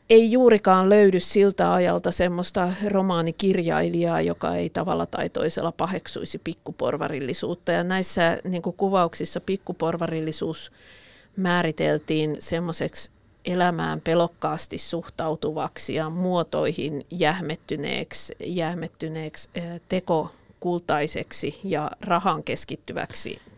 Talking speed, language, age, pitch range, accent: 80 wpm, Finnish, 50-69, 155-185 Hz, native